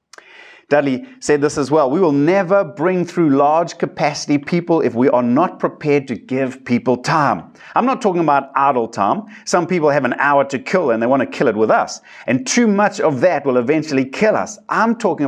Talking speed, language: 210 wpm, English